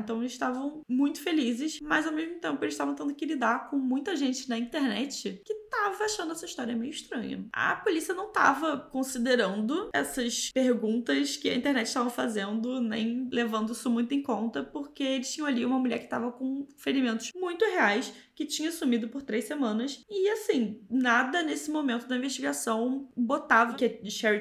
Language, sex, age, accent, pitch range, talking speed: Portuguese, female, 20-39, Brazilian, 230-285 Hz, 180 wpm